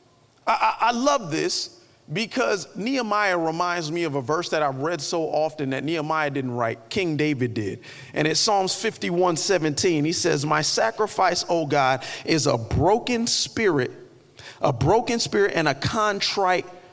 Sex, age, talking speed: male, 40-59, 155 wpm